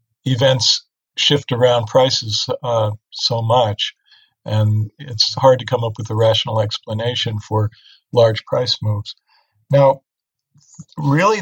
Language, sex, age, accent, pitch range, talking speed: Polish, male, 50-69, American, 110-135 Hz, 120 wpm